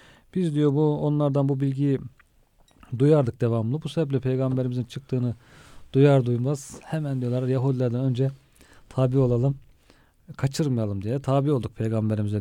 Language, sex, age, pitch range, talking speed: Turkish, male, 40-59, 120-145 Hz, 115 wpm